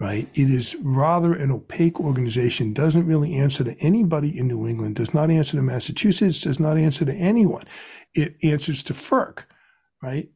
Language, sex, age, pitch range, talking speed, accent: English, male, 60-79, 130-165 Hz, 175 wpm, American